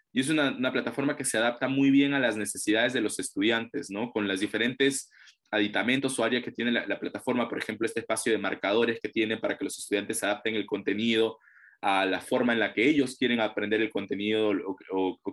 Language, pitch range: Spanish, 110-140 Hz